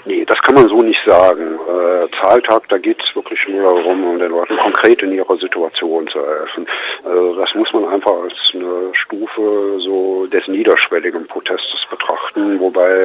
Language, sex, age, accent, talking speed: German, male, 50-69, German, 170 wpm